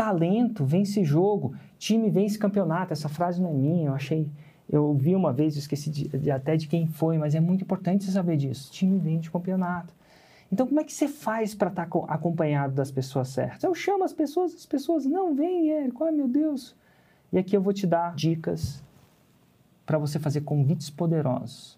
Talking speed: 205 wpm